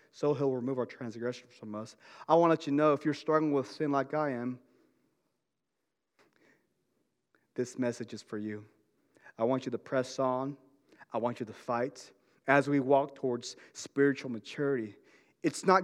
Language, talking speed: English, 170 wpm